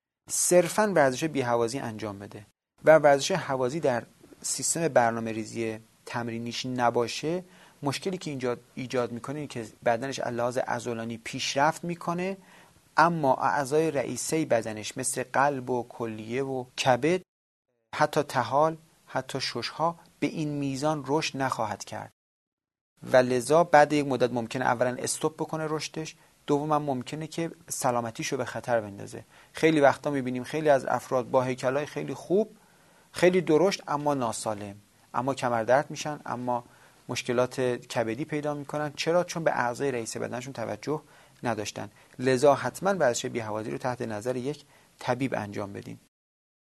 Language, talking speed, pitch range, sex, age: Persian, 135 wpm, 120-155 Hz, male, 30-49